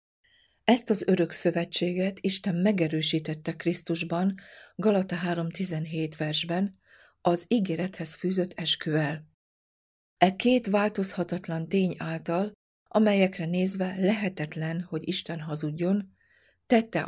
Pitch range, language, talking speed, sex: 160-190 Hz, Hungarian, 90 wpm, female